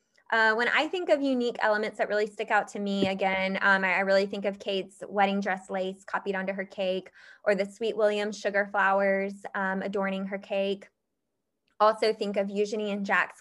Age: 20-39